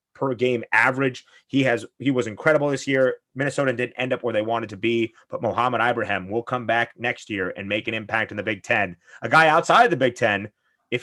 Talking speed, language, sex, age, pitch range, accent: 235 wpm, English, male, 30-49, 120-145 Hz, American